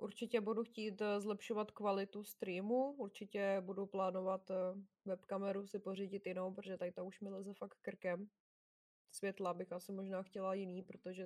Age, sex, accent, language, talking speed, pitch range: 20-39, female, native, Czech, 150 wpm, 185-205 Hz